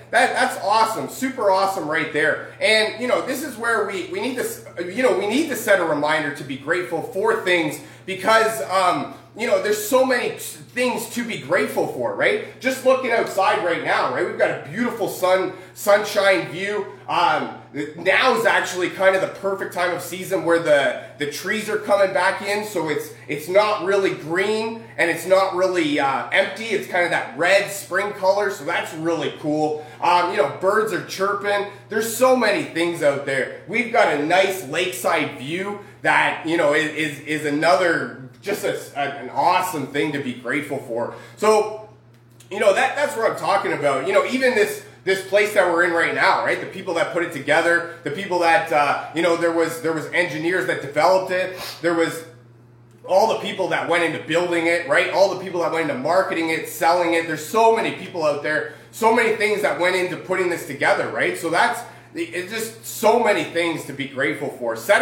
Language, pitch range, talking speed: English, 155-210 Hz, 205 wpm